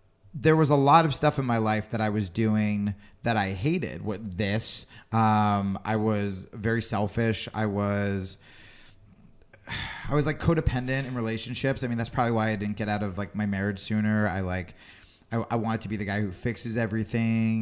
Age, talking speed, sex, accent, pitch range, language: 30-49, 195 wpm, male, American, 105-130 Hz, English